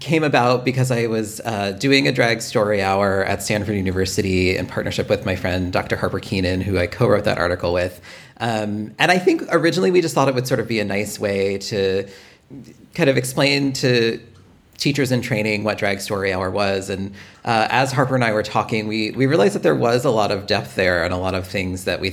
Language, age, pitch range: English, 30-49, 95-130 Hz